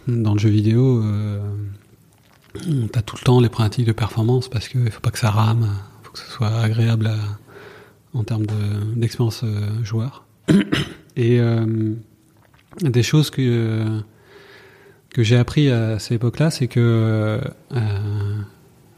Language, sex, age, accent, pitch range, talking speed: French, male, 30-49, French, 110-130 Hz, 150 wpm